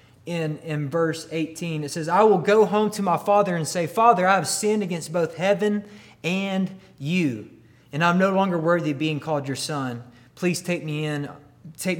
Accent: American